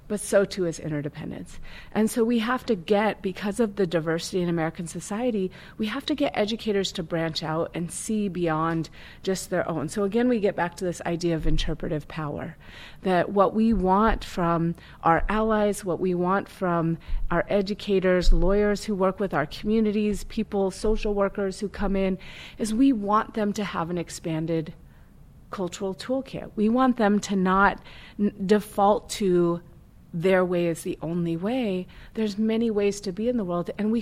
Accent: American